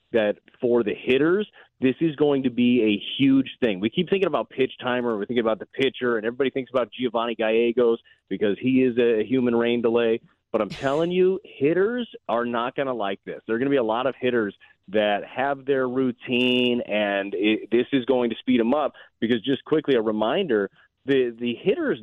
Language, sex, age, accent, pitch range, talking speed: English, male, 30-49, American, 110-135 Hz, 210 wpm